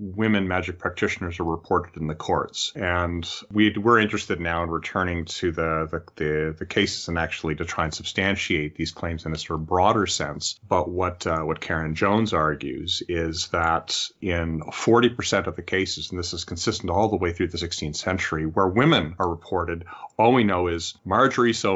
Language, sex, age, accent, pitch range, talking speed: English, male, 30-49, American, 85-105 Hz, 195 wpm